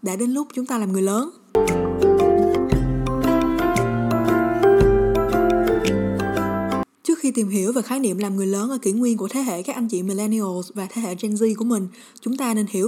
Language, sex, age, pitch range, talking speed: Vietnamese, female, 20-39, 195-245 Hz, 180 wpm